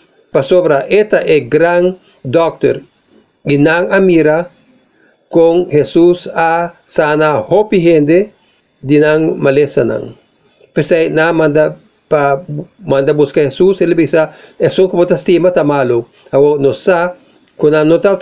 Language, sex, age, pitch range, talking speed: English, male, 50-69, 150-185 Hz, 90 wpm